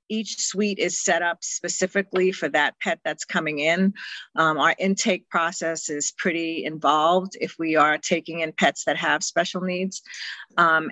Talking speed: 165 wpm